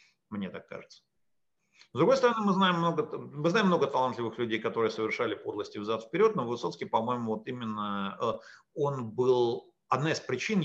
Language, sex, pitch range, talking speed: English, male, 105-140 Hz, 160 wpm